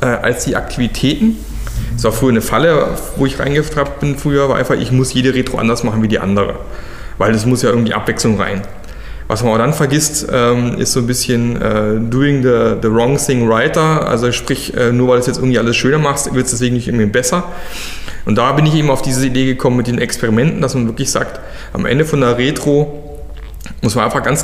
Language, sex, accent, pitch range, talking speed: German, male, German, 115-155 Hz, 215 wpm